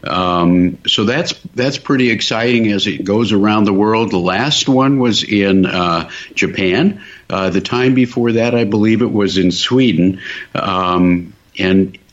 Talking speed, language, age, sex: 160 wpm, English, 50-69, male